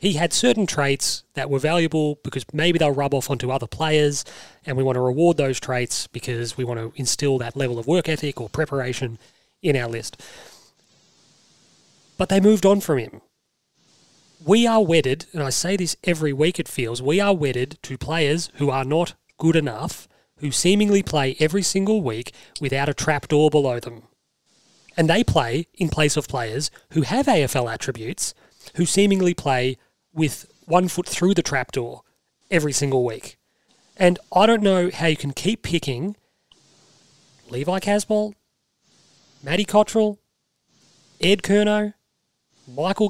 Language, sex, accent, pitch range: English, male, Australian, 135-180 Hz